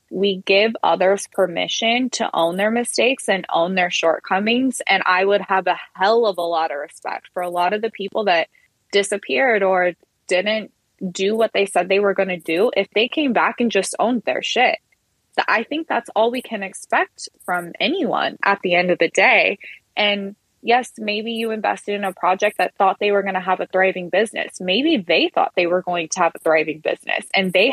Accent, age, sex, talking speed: American, 20-39, female, 210 wpm